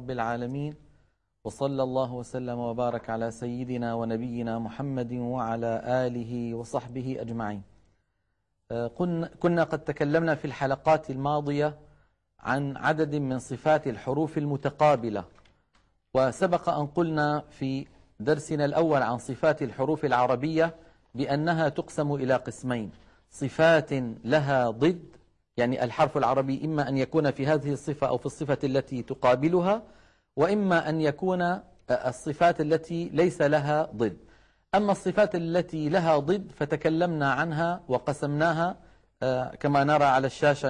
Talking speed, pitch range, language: 110 wpm, 125-160 Hz, Arabic